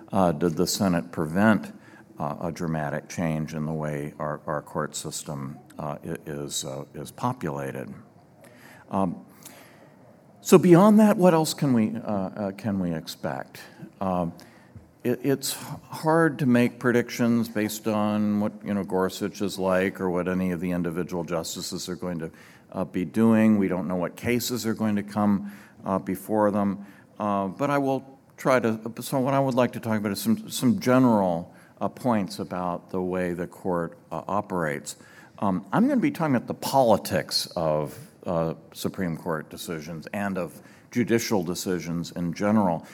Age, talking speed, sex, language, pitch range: 50-69, 170 wpm, male, English, 90-115 Hz